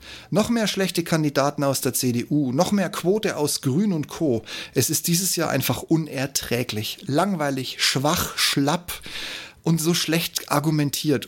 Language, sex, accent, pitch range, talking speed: German, male, German, 125-175 Hz, 145 wpm